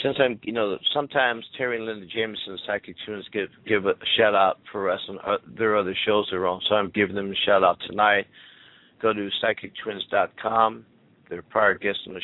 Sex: male